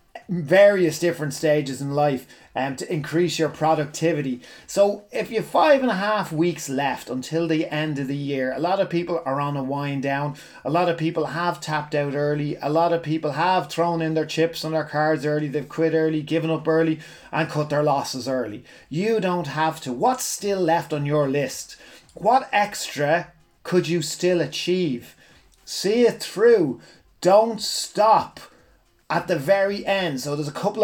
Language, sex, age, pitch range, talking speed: English, male, 30-49, 150-190 Hz, 185 wpm